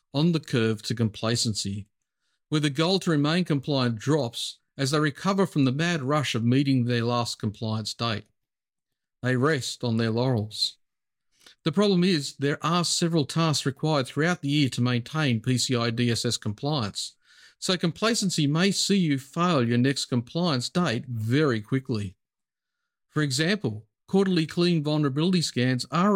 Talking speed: 150 wpm